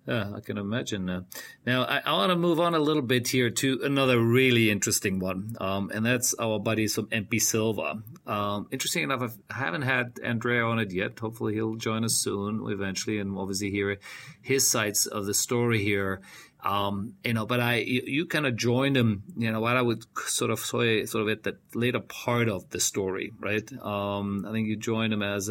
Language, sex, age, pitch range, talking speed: English, male, 40-59, 100-120 Hz, 215 wpm